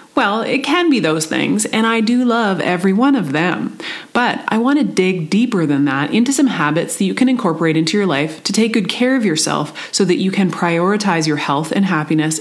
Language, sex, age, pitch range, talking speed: English, female, 30-49, 160-215 Hz, 225 wpm